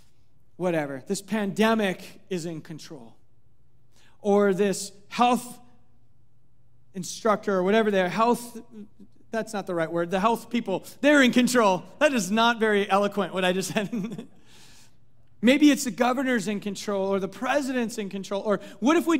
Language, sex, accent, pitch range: English, male, American, 205-260 Hz